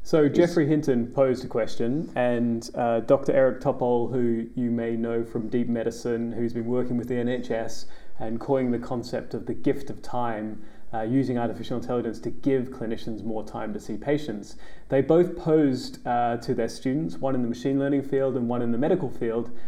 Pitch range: 115-140 Hz